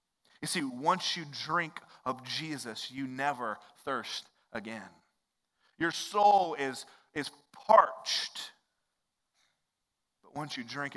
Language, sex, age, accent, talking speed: English, male, 30-49, American, 110 wpm